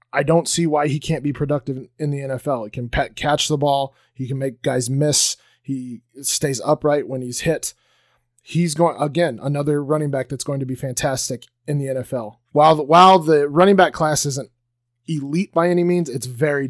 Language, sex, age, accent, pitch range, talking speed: English, male, 30-49, American, 130-160 Hz, 195 wpm